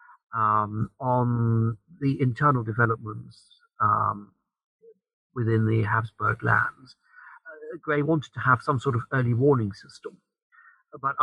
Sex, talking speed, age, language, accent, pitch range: male, 120 wpm, 50-69, English, British, 110-140 Hz